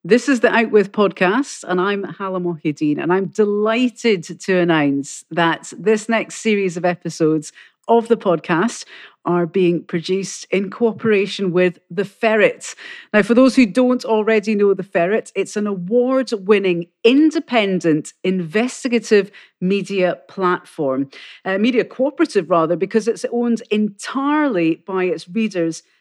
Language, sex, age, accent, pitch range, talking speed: English, female, 40-59, British, 175-230 Hz, 135 wpm